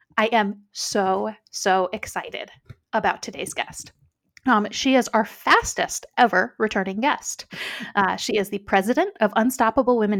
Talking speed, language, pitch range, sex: 140 wpm, English, 200-245 Hz, female